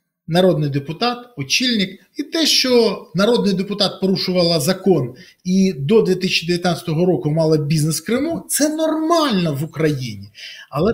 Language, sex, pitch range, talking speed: Ukrainian, male, 175-240 Hz, 125 wpm